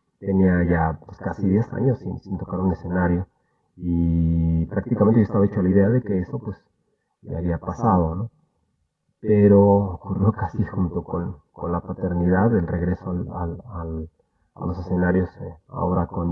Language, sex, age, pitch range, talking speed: Spanish, male, 30-49, 90-105 Hz, 165 wpm